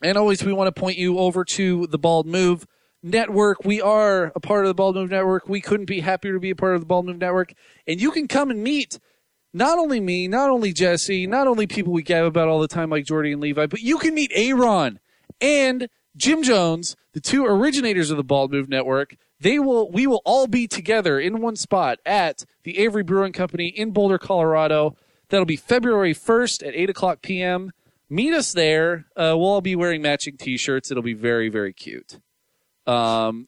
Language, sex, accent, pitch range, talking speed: English, male, American, 155-215 Hz, 215 wpm